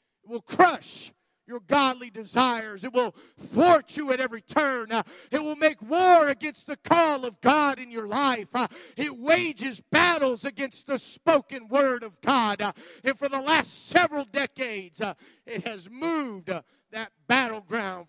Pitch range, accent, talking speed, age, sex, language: 195-265 Hz, American, 165 wpm, 50-69, male, English